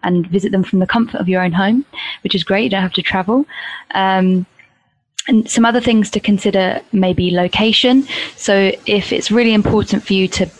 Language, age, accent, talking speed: English, 20-39, British, 205 wpm